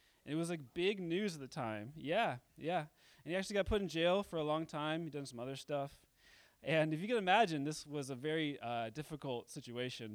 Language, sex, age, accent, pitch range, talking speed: English, male, 20-39, American, 120-155 Hz, 225 wpm